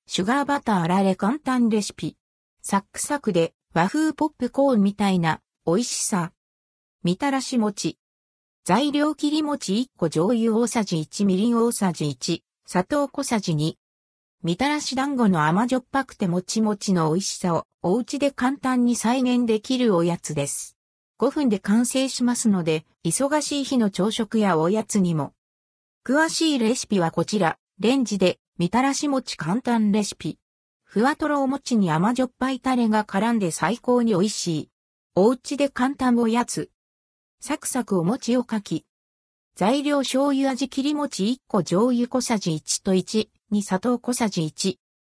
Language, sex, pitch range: Japanese, female, 175-260 Hz